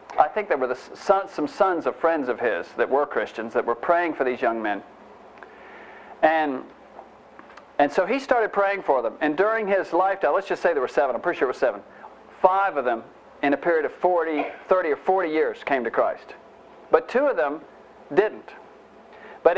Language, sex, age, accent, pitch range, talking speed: English, male, 50-69, American, 140-180 Hz, 205 wpm